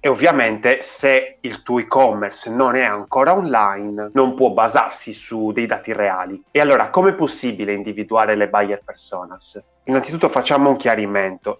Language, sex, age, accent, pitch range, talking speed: Italian, male, 30-49, native, 110-155 Hz, 155 wpm